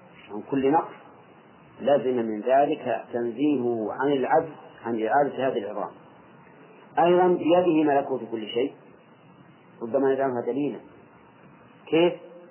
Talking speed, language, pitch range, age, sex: 110 wpm, English, 130-160 Hz, 40-59, male